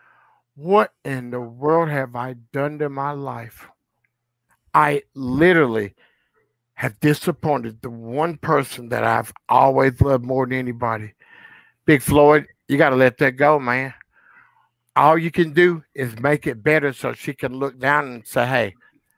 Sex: male